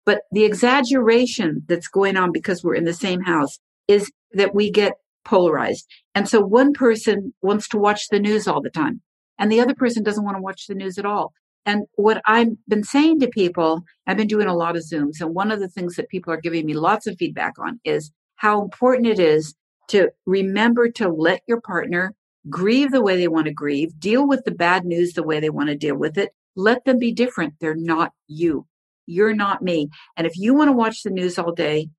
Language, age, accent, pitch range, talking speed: English, 50-69, American, 175-230 Hz, 225 wpm